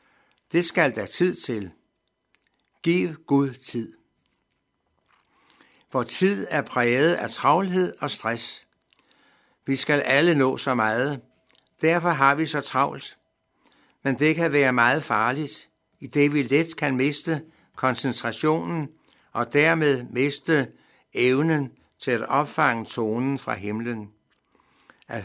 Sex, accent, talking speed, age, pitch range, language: male, native, 120 wpm, 60-79, 125-150 Hz, Danish